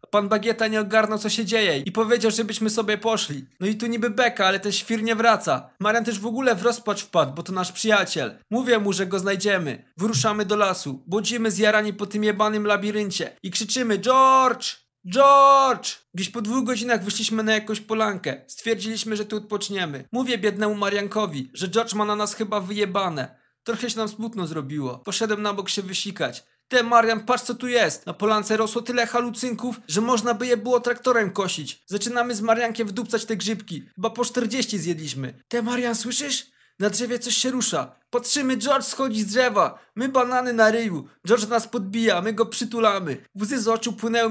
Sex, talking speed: male, 185 wpm